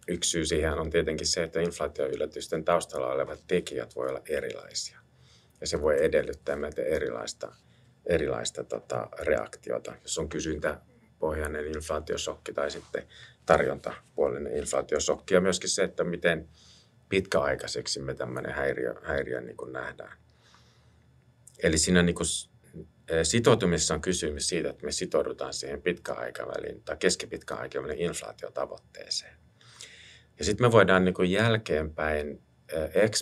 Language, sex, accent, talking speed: Finnish, male, native, 115 wpm